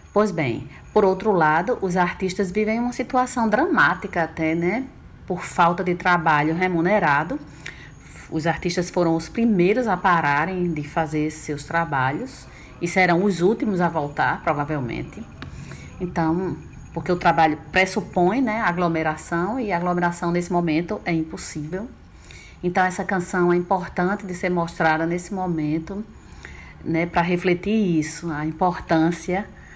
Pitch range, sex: 155-185 Hz, female